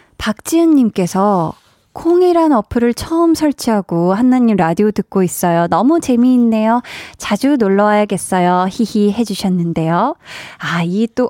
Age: 20-39